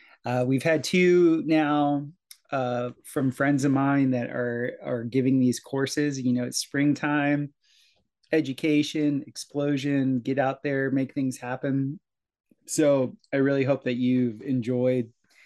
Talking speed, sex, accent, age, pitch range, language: 135 wpm, male, American, 20-39, 125-145 Hz, English